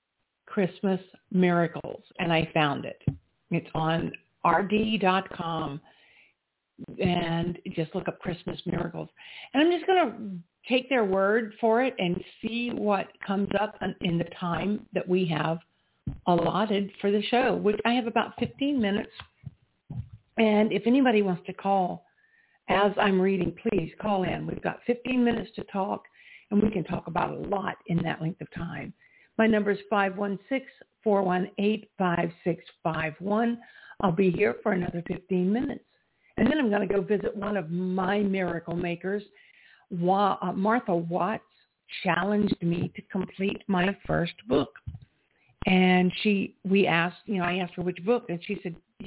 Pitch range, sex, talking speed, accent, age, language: 175-215 Hz, female, 150 wpm, American, 60-79, English